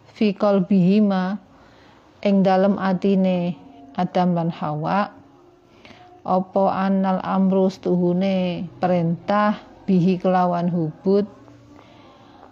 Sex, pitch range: female, 180-205 Hz